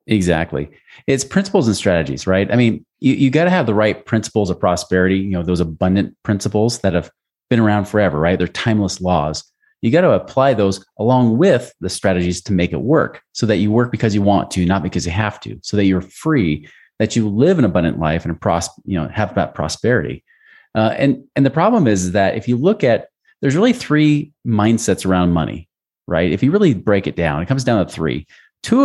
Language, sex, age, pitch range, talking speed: English, male, 30-49, 95-135 Hz, 220 wpm